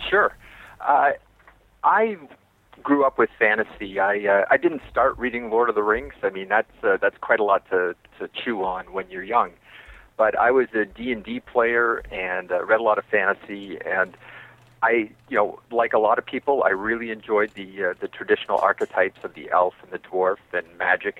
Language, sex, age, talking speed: English, male, 40-59, 200 wpm